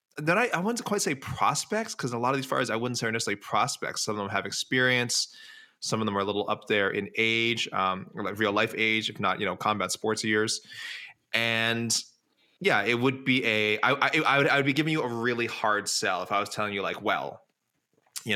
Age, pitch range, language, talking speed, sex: 20-39, 105-125 Hz, English, 240 wpm, male